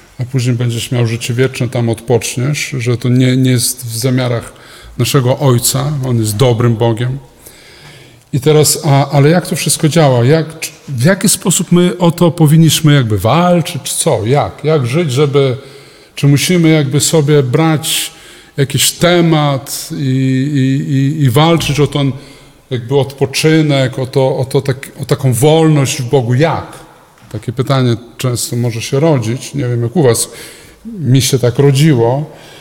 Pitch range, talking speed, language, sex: 130-160 Hz, 160 wpm, Polish, male